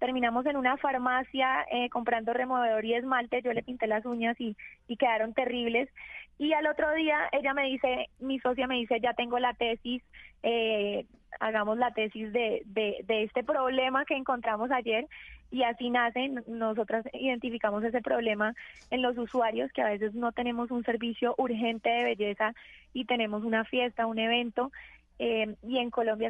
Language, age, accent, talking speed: Spanish, 20-39, Colombian, 170 wpm